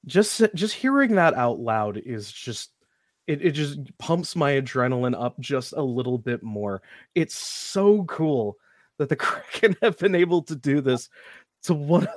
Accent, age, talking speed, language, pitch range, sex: American, 30-49, 175 wpm, English, 130-175 Hz, male